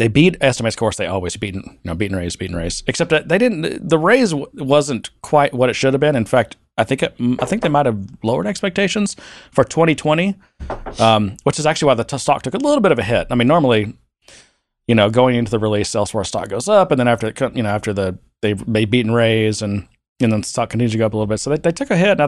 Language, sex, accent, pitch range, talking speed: English, male, American, 100-135 Hz, 270 wpm